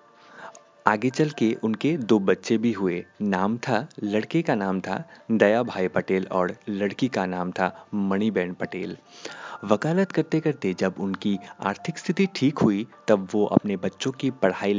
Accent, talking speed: native, 155 wpm